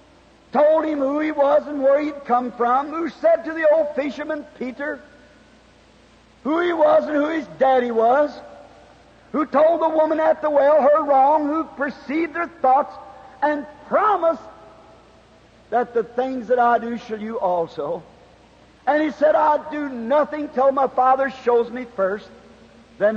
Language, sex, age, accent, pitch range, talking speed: English, male, 50-69, American, 240-300 Hz, 160 wpm